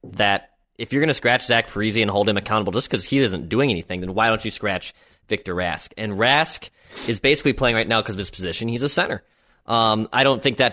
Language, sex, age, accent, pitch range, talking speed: English, male, 20-39, American, 100-135 Hz, 245 wpm